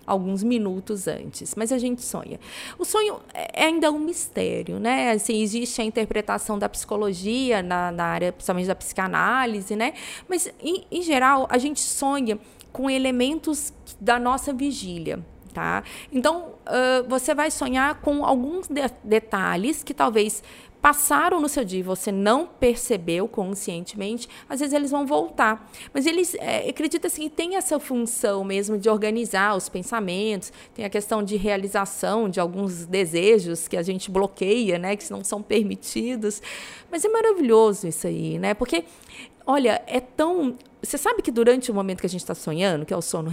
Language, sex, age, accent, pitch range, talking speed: Portuguese, female, 20-39, Brazilian, 195-275 Hz, 165 wpm